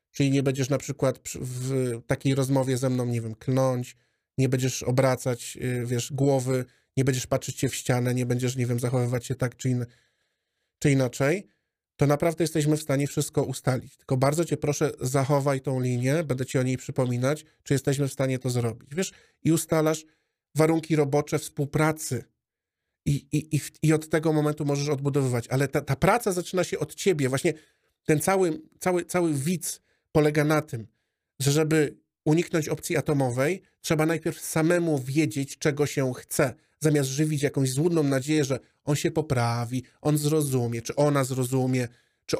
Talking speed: 170 wpm